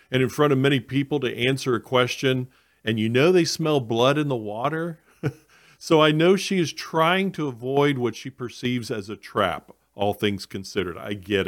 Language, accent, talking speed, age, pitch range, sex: English, American, 200 wpm, 40-59, 105-150 Hz, male